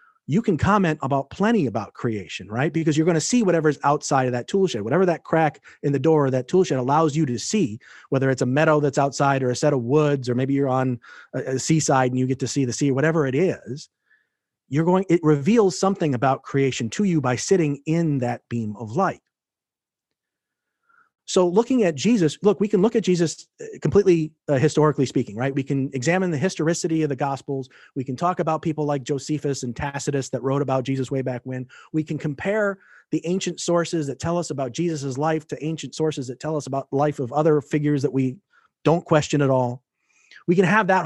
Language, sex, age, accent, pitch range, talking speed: English, male, 30-49, American, 135-165 Hz, 220 wpm